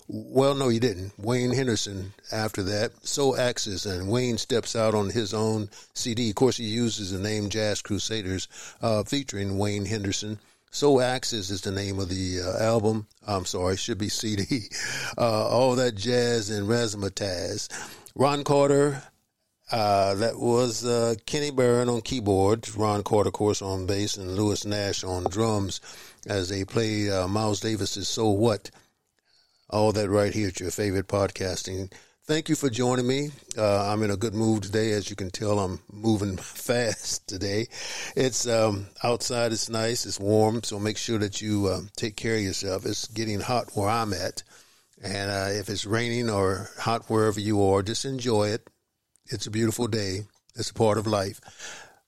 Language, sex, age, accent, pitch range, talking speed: English, male, 50-69, American, 100-115 Hz, 175 wpm